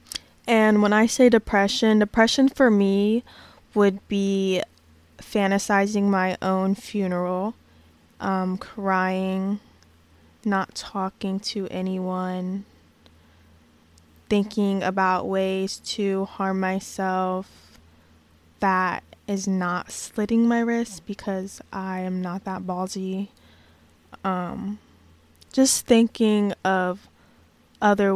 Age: 20-39